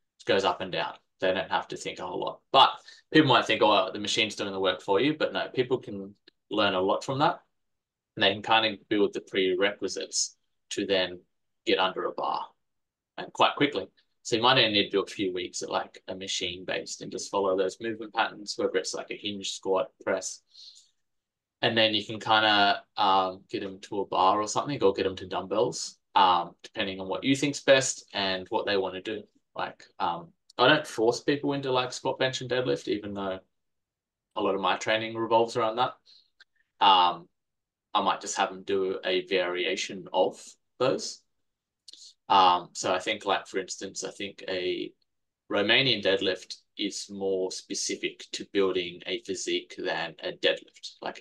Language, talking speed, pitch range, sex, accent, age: English, 195 wpm, 95-130 Hz, male, Australian, 20-39